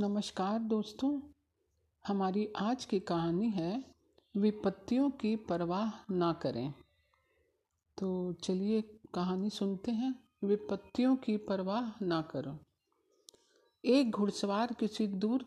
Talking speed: 100 wpm